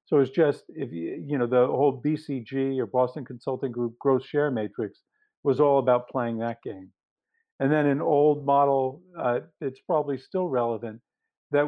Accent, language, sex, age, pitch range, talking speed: American, English, male, 50-69, 125-145 Hz, 175 wpm